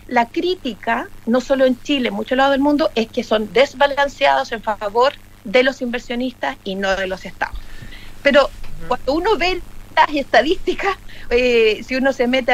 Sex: female